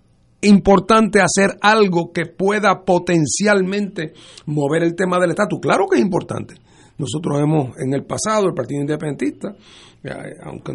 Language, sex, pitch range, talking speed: Spanish, male, 130-190 Hz, 135 wpm